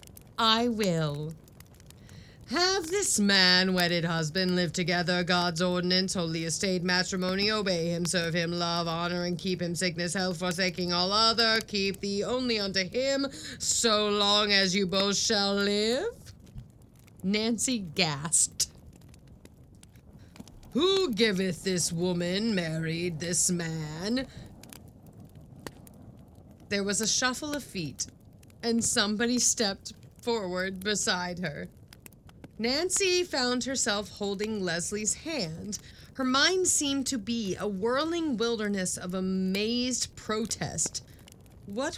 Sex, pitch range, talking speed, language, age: female, 180-275 Hz, 115 wpm, English, 30-49